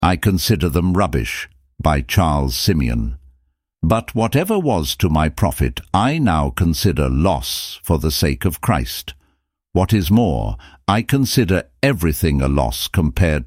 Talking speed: 140 wpm